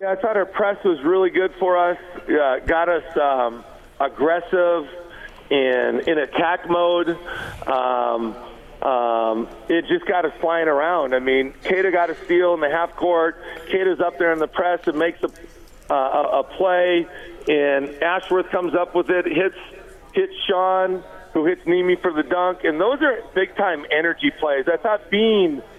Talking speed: 170 wpm